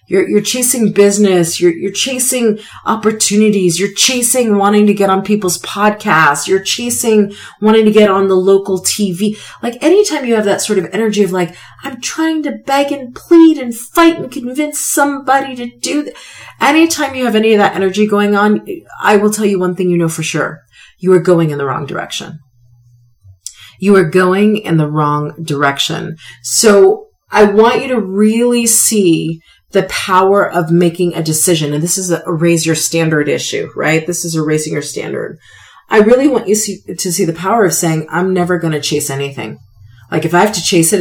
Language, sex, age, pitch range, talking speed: English, female, 40-59, 155-210 Hz, 195 wpm